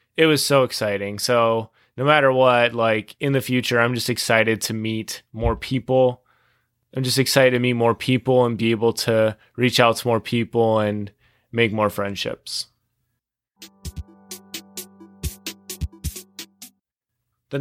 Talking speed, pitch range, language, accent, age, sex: 135 wpm, 115-140 Hz, English, American, 20-39, male